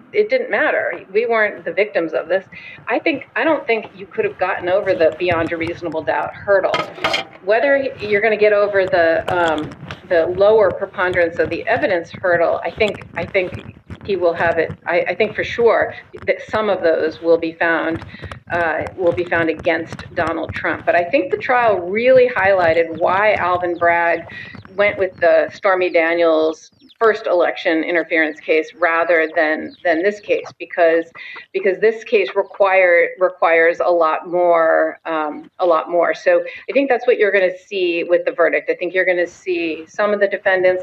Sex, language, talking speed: female, English, 185 wpm